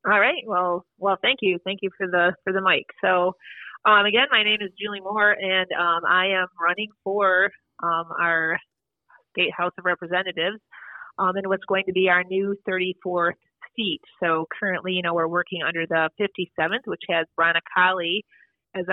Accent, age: American, 30-49